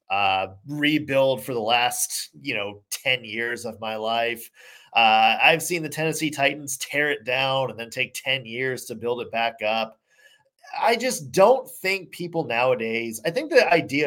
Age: 20-39